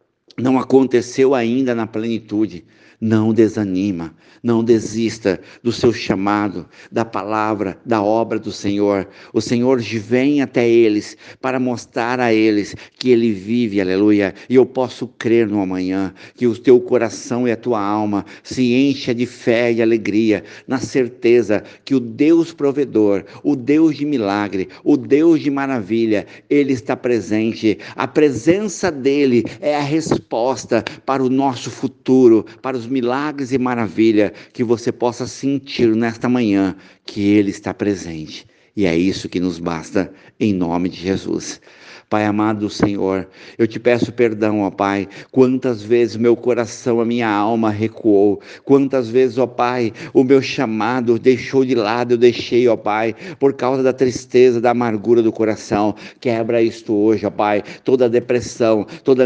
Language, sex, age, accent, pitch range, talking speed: Portuguese, male, 60-79, Brazilian, 105-130 Hz, 155 wpm